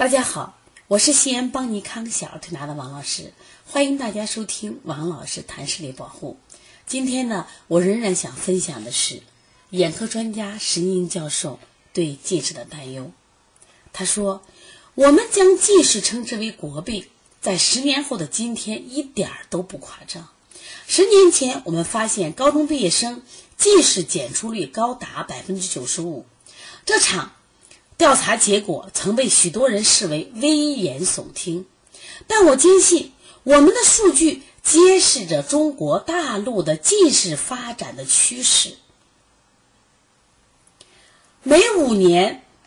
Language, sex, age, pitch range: Chinese, female, 30-49, 175-295 Hz